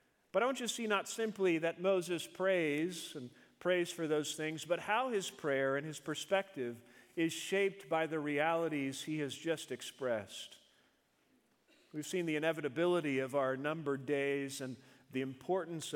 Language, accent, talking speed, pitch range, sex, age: English, American, 160 wpm, 140-175 Hz, male, 50-69